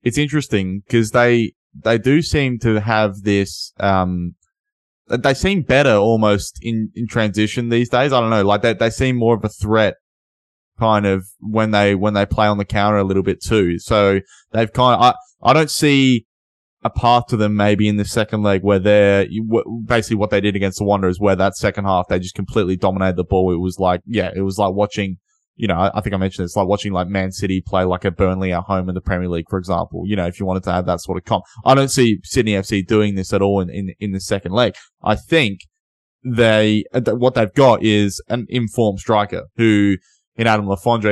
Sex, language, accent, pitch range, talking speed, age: male, English, Australian, 95-115 Hz, 225 wpm, 20-39